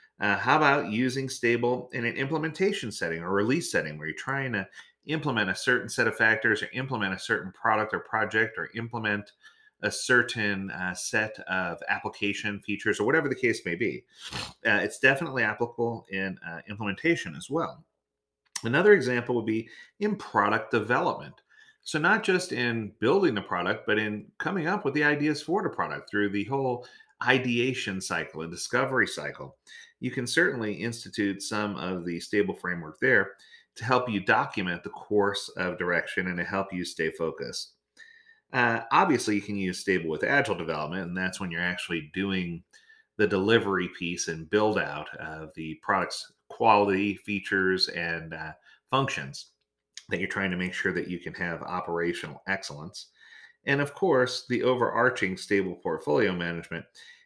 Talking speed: 165 wpm